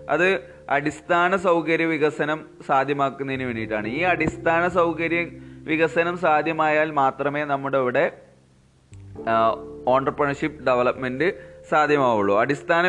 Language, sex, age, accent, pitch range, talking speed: Malayalam, male, 20-39, native, 120-150 Hz, 85 wpm